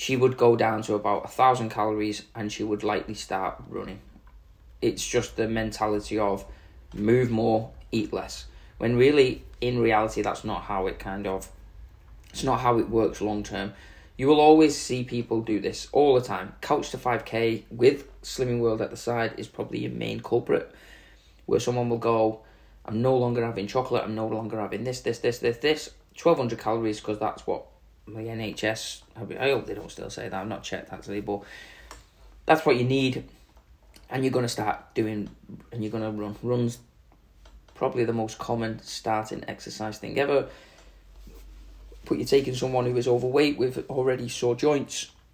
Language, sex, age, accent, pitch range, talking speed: English, male, 20-39, British, 105-125 Hz, 180 wpm